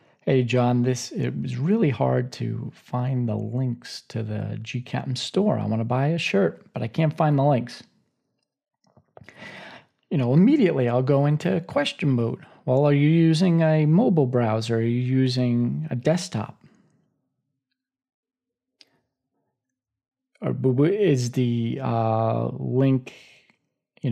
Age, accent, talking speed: 40-59, American, 135 wpm